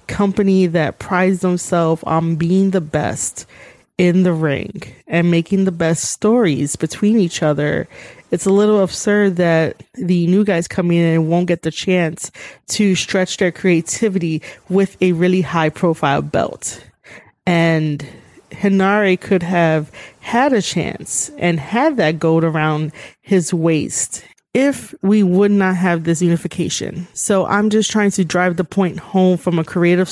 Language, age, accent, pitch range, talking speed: English, 30-49, American, 165-190 Hz, 155 wpm